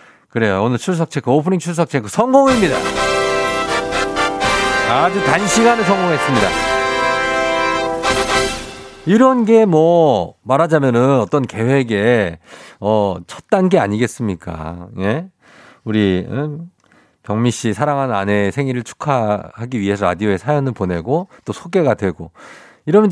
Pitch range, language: 100-145 Hz, Korean